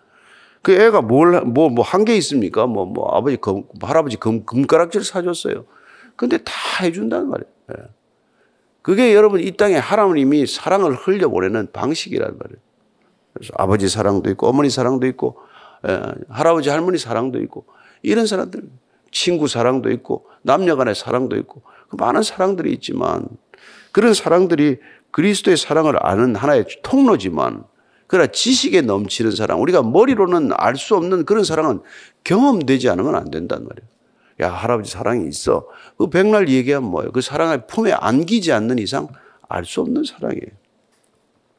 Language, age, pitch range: Korean, 50-69, 130-215 Hz